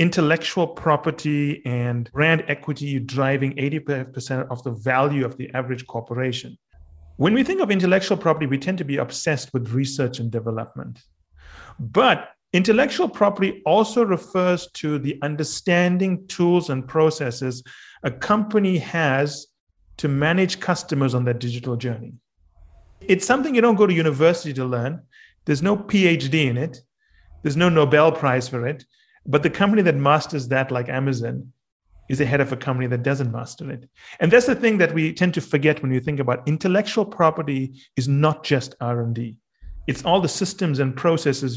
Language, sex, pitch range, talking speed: English, male, 125-170 Hz, 160 wpm